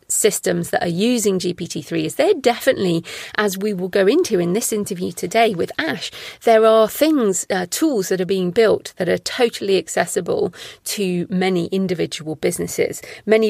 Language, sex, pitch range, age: English, female, 180-245 Hz, 40-59